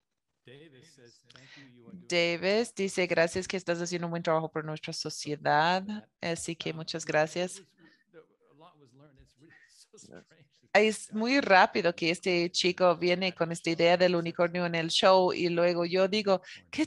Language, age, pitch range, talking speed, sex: English, 30-49, 165-215 Hz, 130 wpm, female